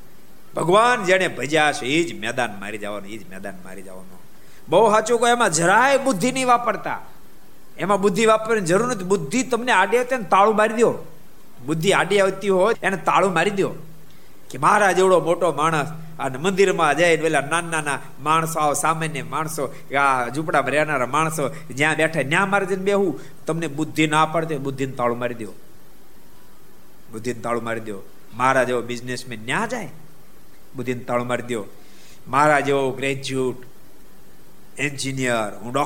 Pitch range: 120-185 Hz